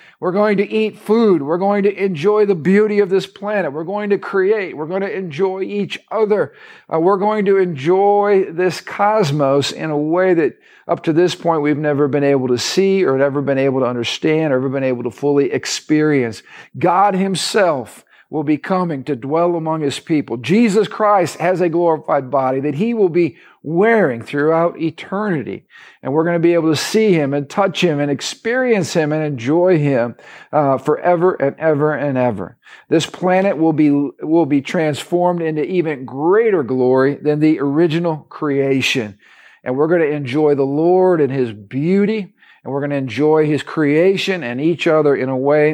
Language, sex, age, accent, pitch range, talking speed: English, male, 50-69, American, 140-185 Hz, 190 wpm